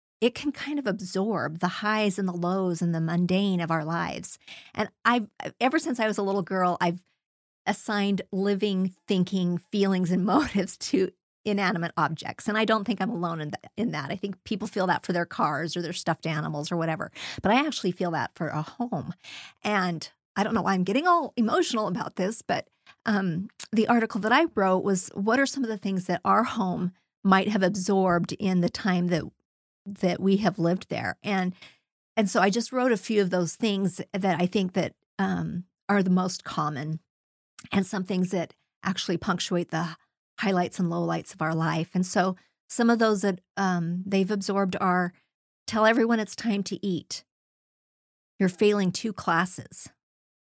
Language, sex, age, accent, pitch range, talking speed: English, female, 40-59, American, 175-215 Hz, 190 wpm